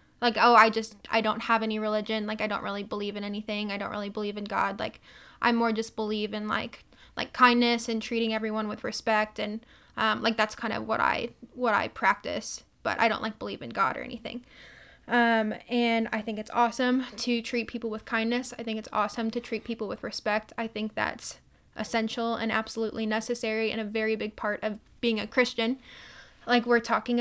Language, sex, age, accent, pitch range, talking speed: English, female, 10-29, American, 220-235 Hz, 210 wpm